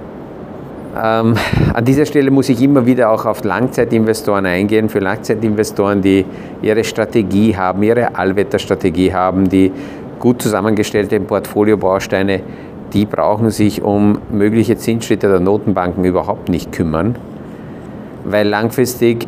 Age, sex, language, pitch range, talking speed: 50-69, male, German, 100-115 Hz, 120 wpm